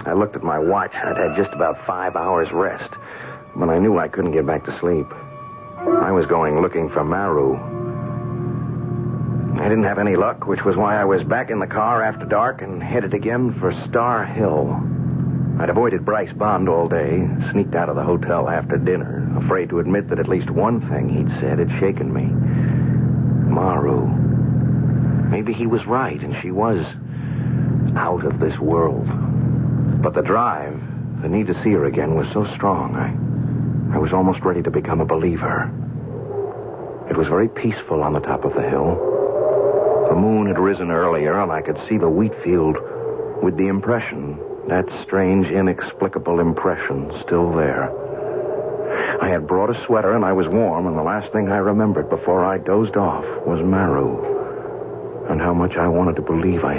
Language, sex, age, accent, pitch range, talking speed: English, male, 60-79, American, 95-140 Hz, 180 wpm